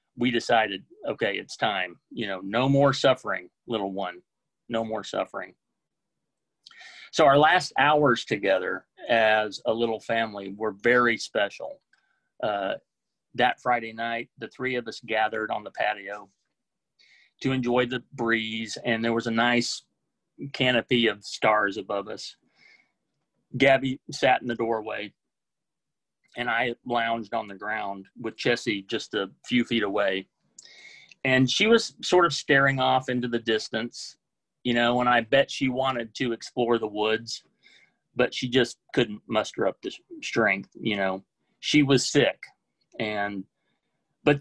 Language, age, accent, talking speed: English, 30-49, American, 145 wpm